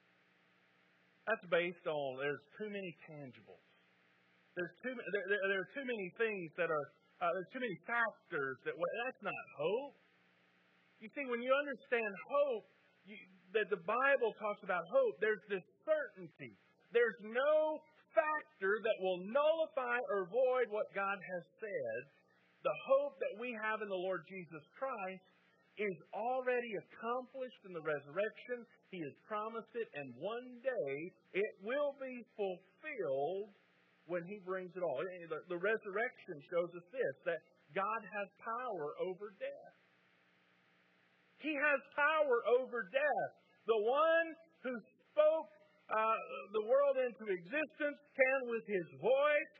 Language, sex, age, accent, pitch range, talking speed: English, male, 40-59, American, 175-275 Hz, 140 wpm